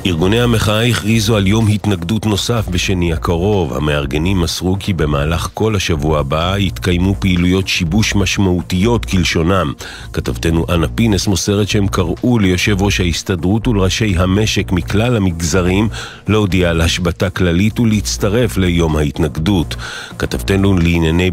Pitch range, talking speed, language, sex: 85-105 Hz, 120 wpm, Hebrew, male